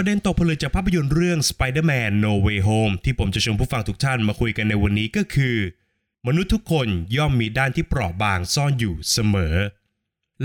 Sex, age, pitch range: male, 20-39, 105-145 Hz